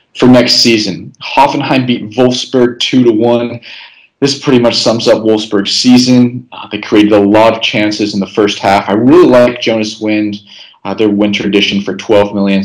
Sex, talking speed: male, 185 wpm